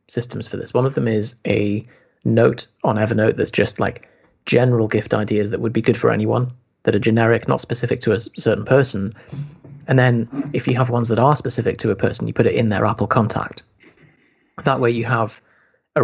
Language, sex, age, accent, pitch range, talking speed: English, male, 30-49, British, 105-125 Hz, 210 wpm